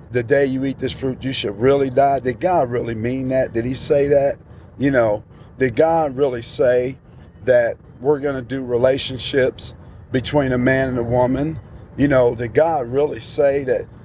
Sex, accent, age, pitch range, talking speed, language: male, American, 50-69, 125-150 Hz, 190 wpm, English